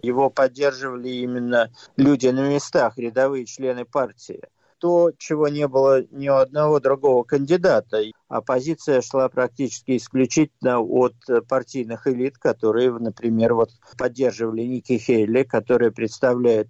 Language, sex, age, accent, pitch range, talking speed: Russian, male, 50-69, native, 120-145 Hz, 120 wpm